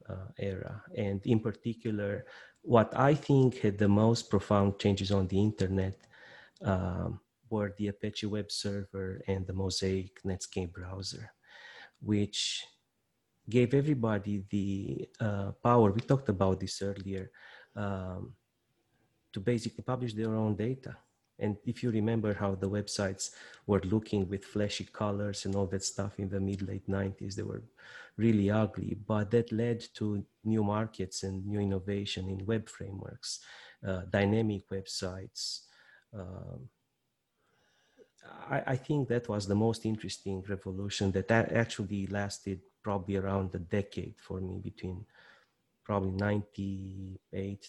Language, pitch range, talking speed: English, 95-110 Hz, 135 wpm